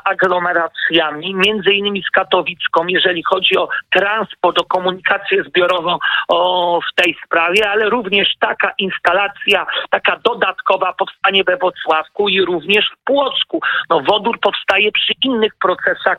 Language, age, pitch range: Polish, 50-69, 175-210 Hz